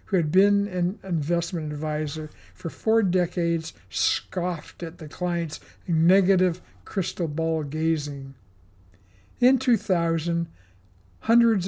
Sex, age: male, 60-79